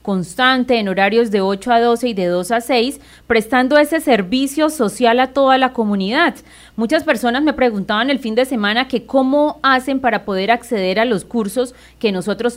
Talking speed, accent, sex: 185 wpm, Colombian, female